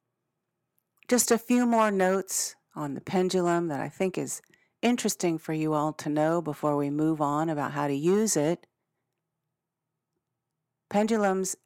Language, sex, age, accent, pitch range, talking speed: English, female, 40-59, American, 160-205 Hz, 145 wpm